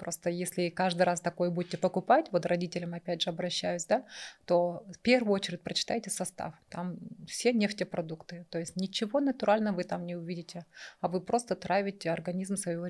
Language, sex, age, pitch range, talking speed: Russian, female, 30-49, 175-210 Hz, 165 wpm